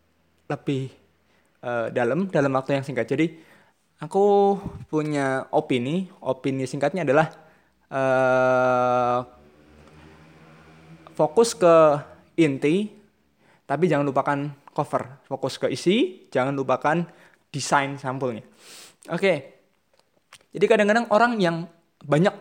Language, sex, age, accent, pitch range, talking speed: Indonesian, male, 20-39, native, 135-170 Hz, 95 wpm